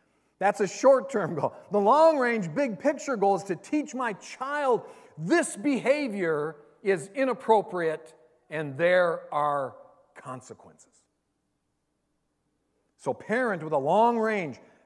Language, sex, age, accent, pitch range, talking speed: English, male, 50-69, American, 170-235 Hz, 105 wpm